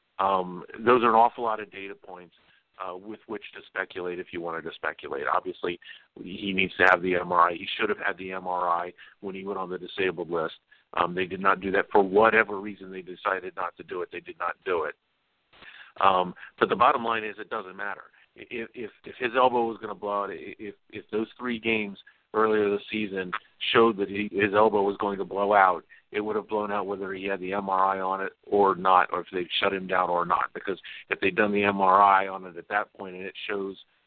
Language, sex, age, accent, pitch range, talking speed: English, male, 50-69, American, 90-105 Hz, 230 wpm